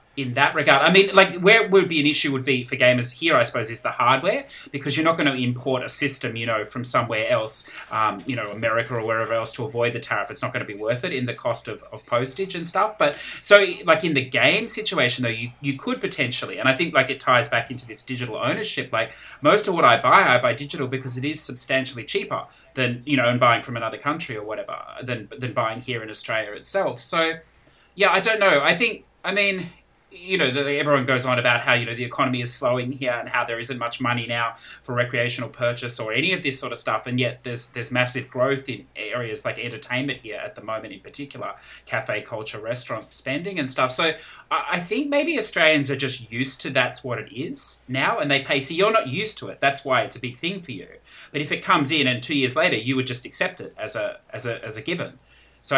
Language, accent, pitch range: English, Australian, 120-150 Hz